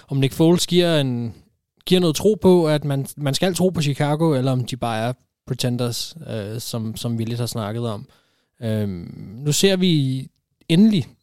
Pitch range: 115-145 Hz